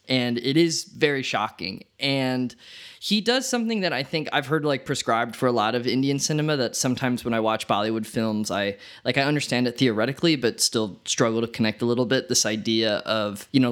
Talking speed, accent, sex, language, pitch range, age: 210 wpm, American, male, English, 115-145 Hz, 20-39